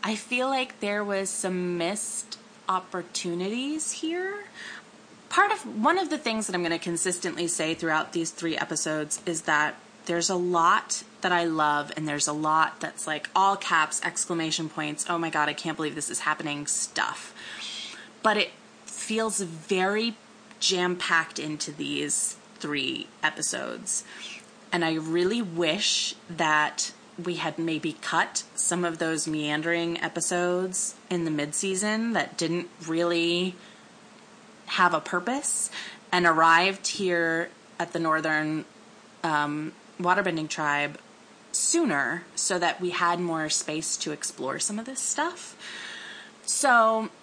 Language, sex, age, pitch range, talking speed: English, female, 20-39, 160-220 Hz, 140 wpm